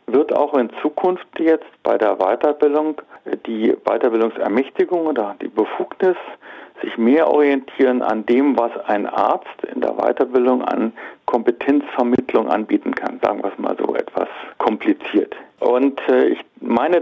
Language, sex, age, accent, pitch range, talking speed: German, male, 50-69, German, 115-145 Hz, 135 wpm